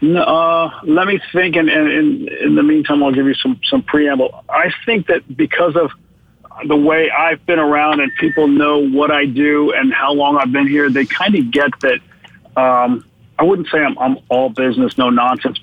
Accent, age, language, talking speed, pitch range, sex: American, 50-69, English, 205 wpm, 130-155 Hz, male